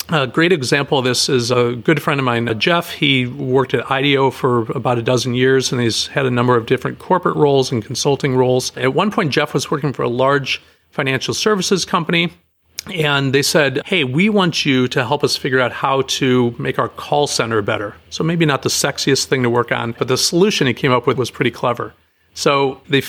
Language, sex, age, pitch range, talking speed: English, male, 40-59, 125-155 Hz, 220 wpm